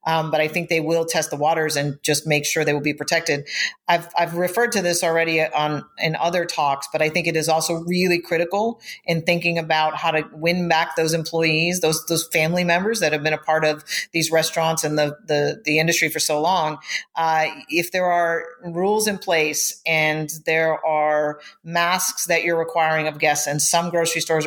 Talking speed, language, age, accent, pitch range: 205 wpm, English, 40-59, American, 155-170 Hz